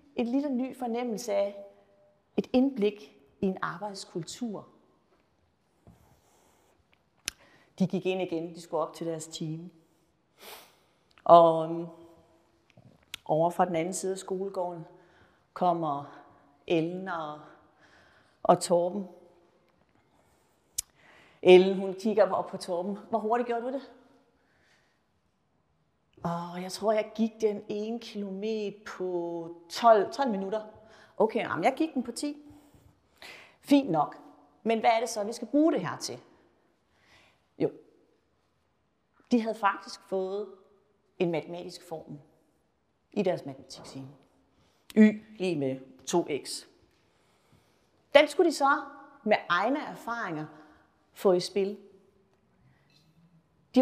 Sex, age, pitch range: female, 40-59, 170-225 Hz